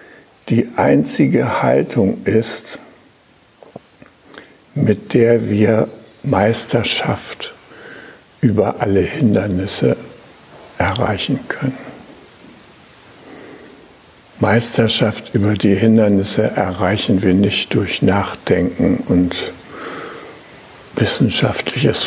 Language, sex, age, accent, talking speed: German, male, 60-79, German, 65 wpm